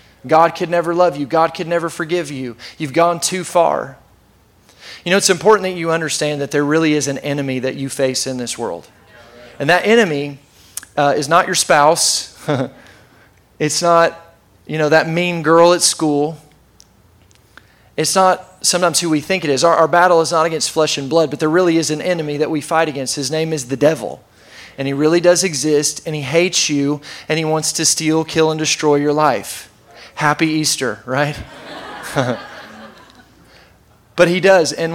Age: 30-49